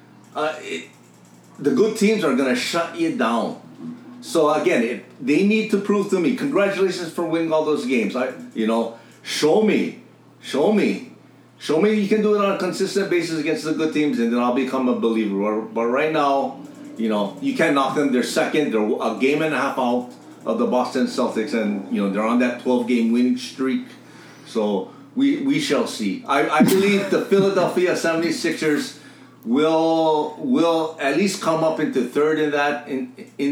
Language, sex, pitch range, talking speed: English, male, 120-165 Hz, 190 wpm